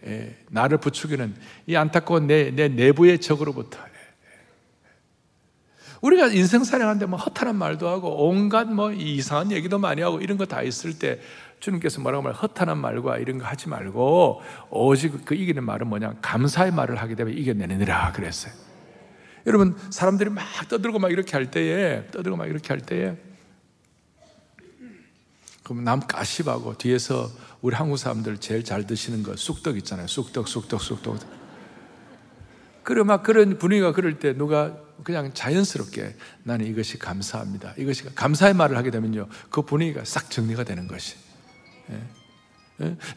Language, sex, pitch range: Korean, male, 120-195 Hz